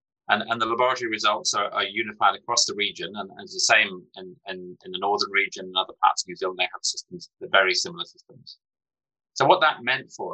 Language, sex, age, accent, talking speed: English, male, 30-49, British, 240 wpm